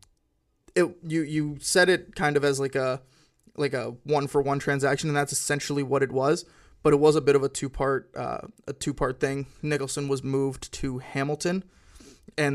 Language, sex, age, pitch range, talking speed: English, male, 20-39, 135-150 Hz, 190 wpm